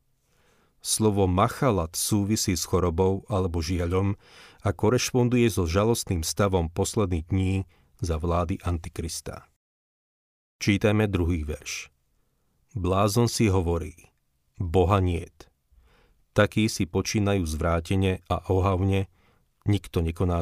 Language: Slovak